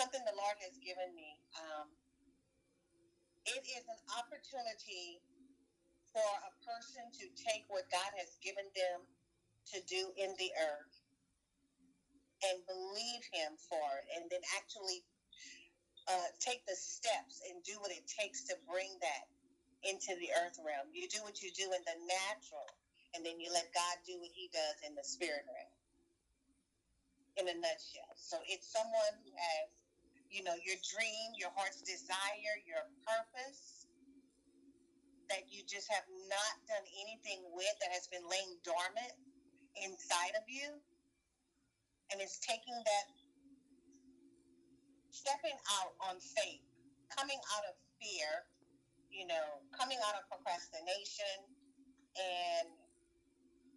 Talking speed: 135 wpm